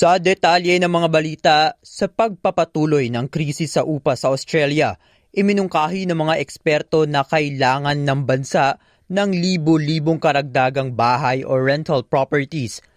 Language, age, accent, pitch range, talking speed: Filipino, 20-39, native, 150-185 Hz, 130 wpm